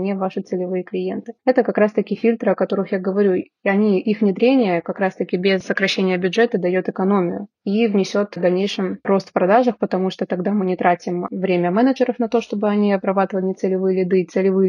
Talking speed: 200 wpm